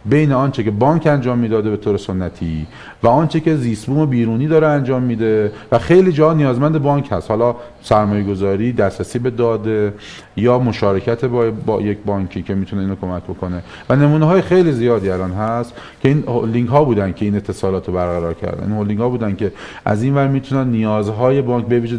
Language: Persian